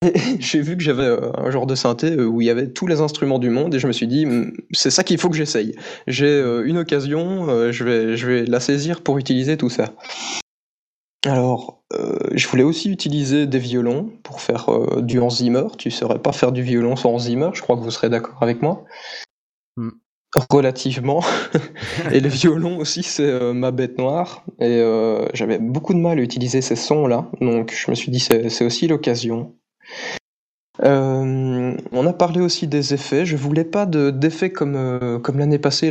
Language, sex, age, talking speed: French, male, 20-39, 190 wpm